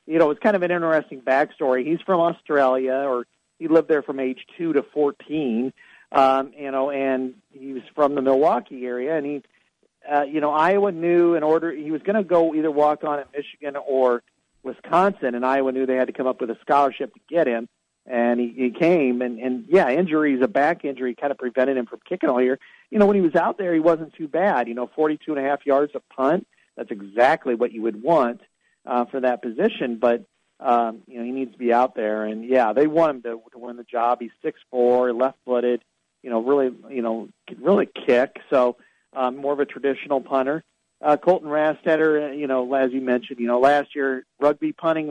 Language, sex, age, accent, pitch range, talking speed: English, male, 50-69, American, 125-155 Hz, 220 wpm